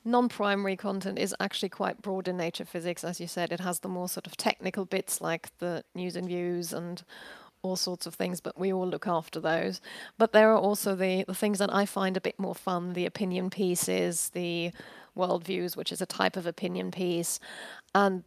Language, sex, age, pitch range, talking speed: English, female, 30-49, 175-205 Hz, 210 wpm